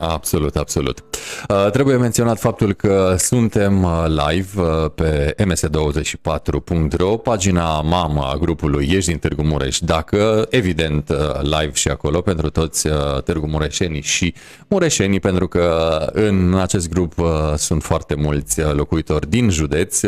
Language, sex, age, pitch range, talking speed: Romanian, male, 30-49, 80-105 Hz, 120 wpm